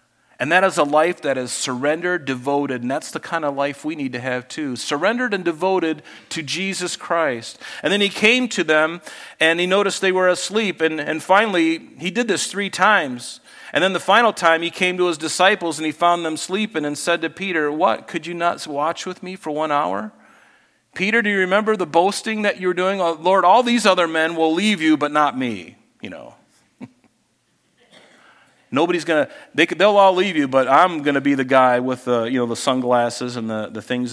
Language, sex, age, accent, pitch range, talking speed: English, male, 40-59, American, 120-175 Hz, 215 wpm